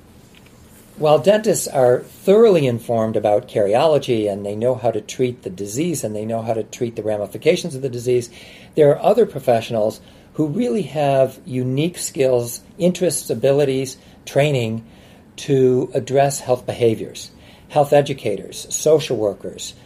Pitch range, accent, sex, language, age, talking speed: 115-145 Hz, American, male, English, 50-69, 140 wpm